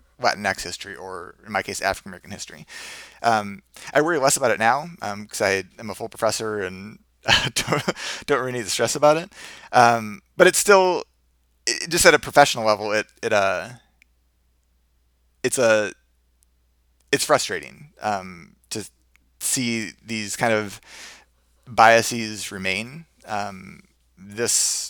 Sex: male